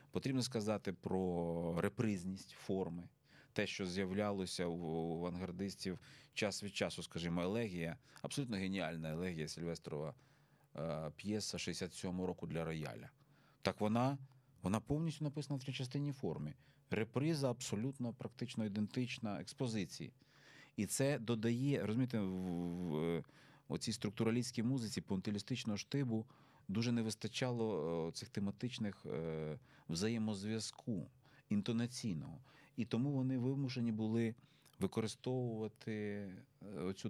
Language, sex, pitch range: Ukrainian, male, 90-125 Hz